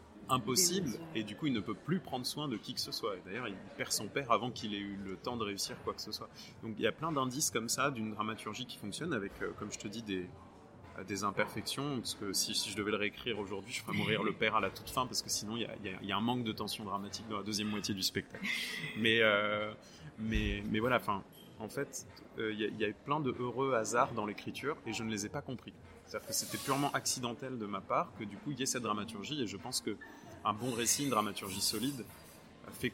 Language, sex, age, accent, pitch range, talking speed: French, male, 20-39, French, 100-130 Hz, 265 wpm